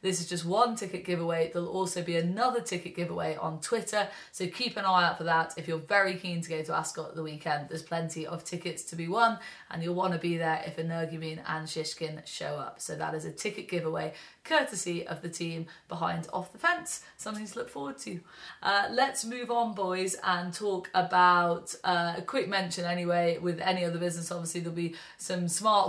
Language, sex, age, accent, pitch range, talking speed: English, female, 20-39, British, 165-185 Hz, 210 wpm